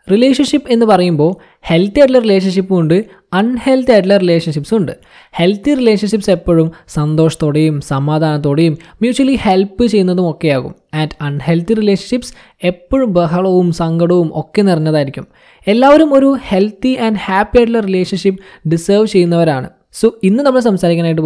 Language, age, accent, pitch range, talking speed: Malayalam, 20-39, native, 165-225 Hz, 115 wpm